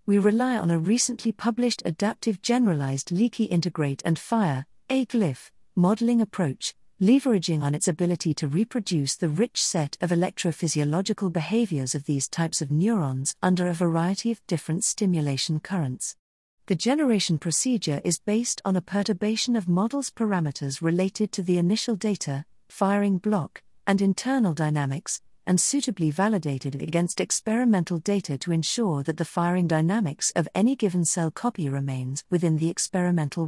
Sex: female